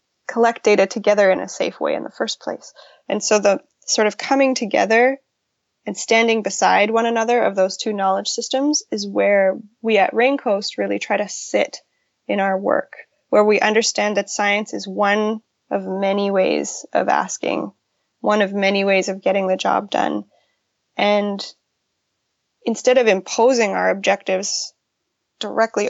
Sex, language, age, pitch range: female, English, 10-29, 195-235 Hz